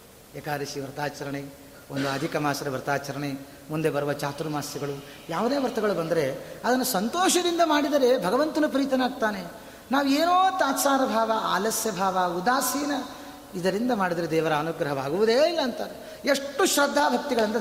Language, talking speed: Kannada, 105 wpm